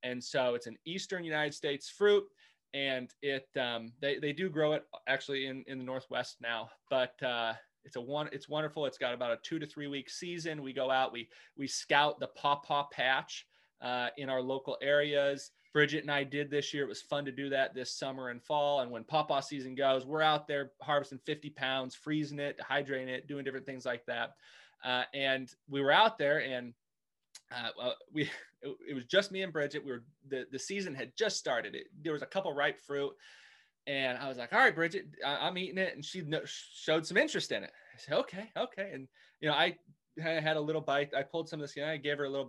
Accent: American